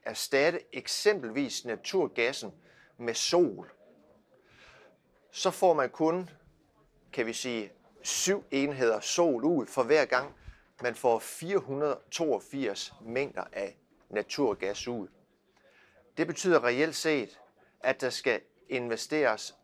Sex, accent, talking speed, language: male, native, 105 wpm, Danish